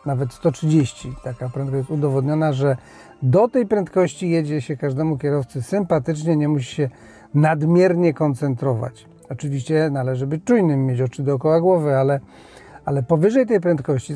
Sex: male